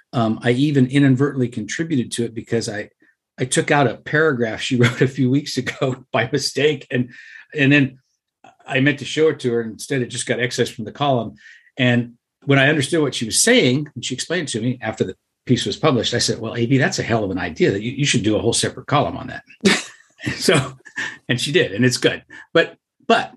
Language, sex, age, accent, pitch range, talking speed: English, male, 50-69, American, 120-145 Hz, 230 wpm